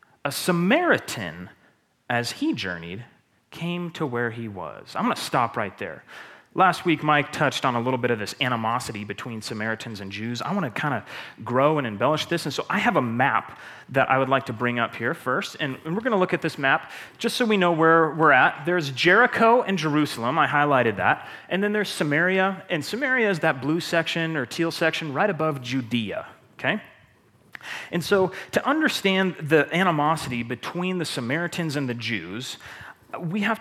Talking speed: 185 wpm